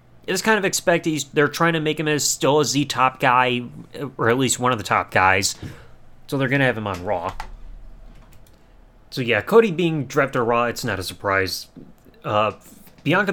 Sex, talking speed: male, 195 wpm